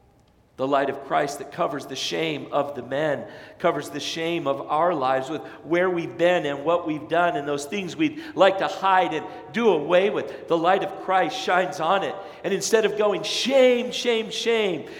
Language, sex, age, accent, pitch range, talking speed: English, male, 50-69, American, 140-205 Hz, 200 wpm